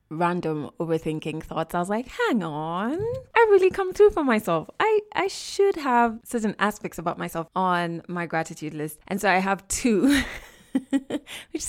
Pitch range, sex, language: 160-215 Hz, female, English